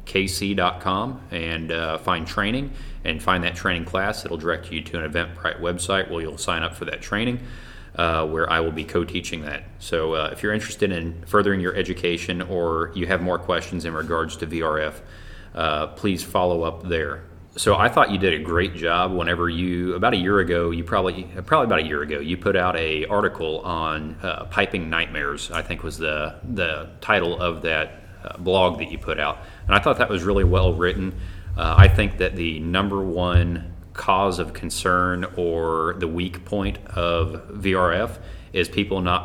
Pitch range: 85-95 Hz